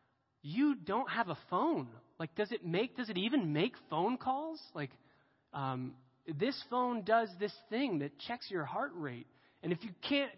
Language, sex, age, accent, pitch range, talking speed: English, male, 30-49, American, 135-200 Hz, 180 wpm